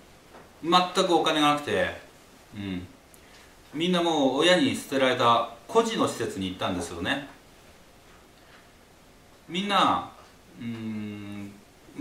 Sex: male